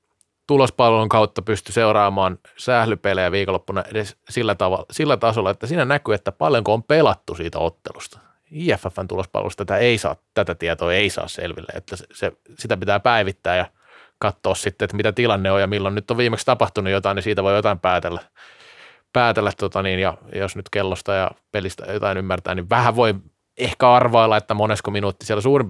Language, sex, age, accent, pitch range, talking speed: Finnish, male, 30-49, native, 95-115 Hz, 170 wpm